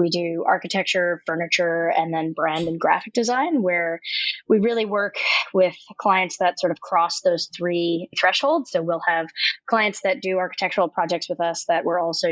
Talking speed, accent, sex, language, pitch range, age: 175 wpm, American, female, English, 165-205 Hz, 20-39